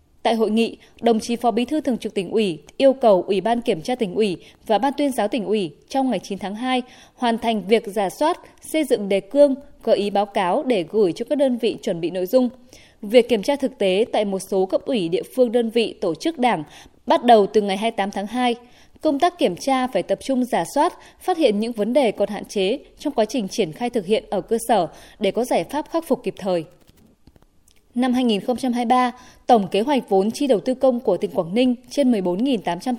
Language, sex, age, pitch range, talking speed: Vietnamese, female, 20-39, 205-265 Hz, 235 wpm